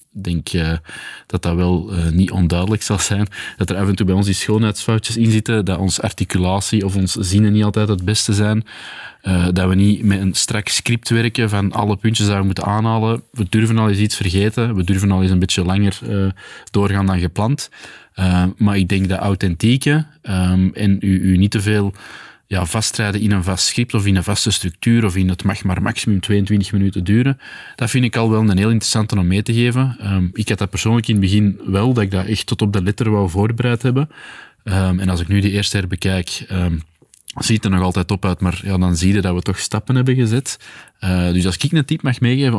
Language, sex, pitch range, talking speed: Dutch, male, 95-110 Hz, 235 wpm